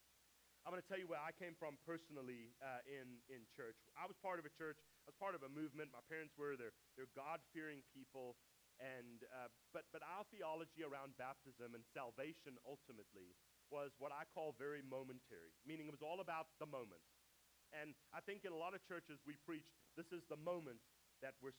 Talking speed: 205 wpm